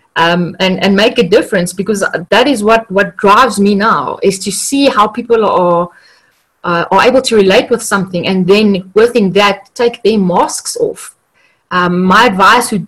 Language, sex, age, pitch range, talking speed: English, female, 20-39, 185-225 Hz, 180 wpm